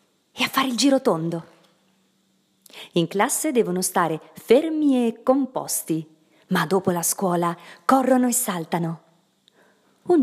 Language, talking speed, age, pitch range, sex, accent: Italian, 125 wpm, 40-59, 175-230 Hz, female, native